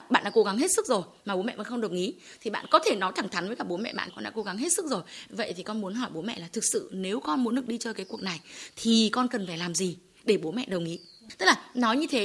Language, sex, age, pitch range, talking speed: Vietnamese, female, 20-39, 195-285 Hz, 335 wpm